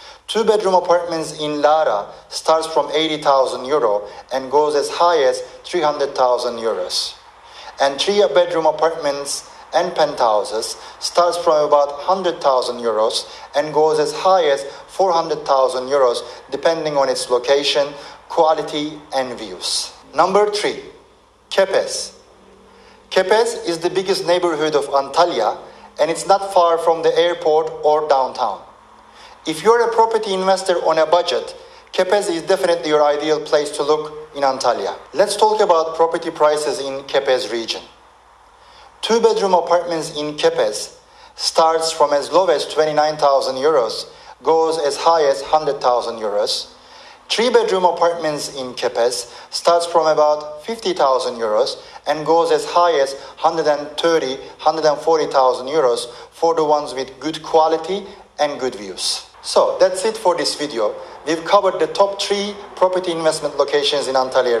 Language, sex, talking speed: English, male, 135 wpm